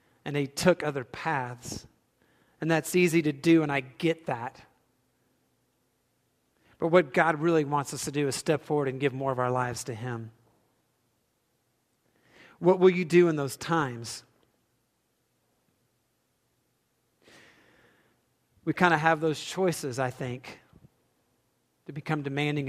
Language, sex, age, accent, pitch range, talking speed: English, male, 40-59, American, 130-170 Hz, 135 wpm